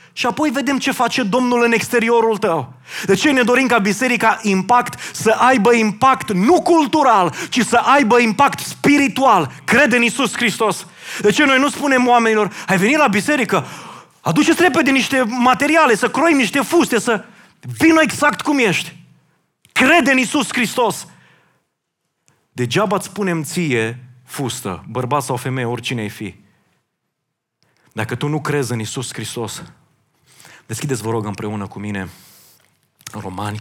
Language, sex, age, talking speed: Romanian, male, 30-49, 145 wpm